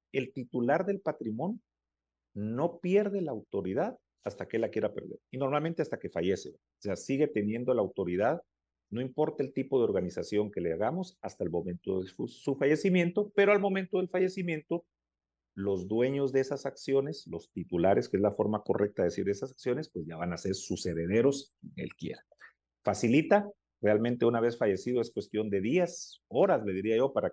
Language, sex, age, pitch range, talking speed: Spanish, male, 40-59, 100-165 Hz, 185 wpm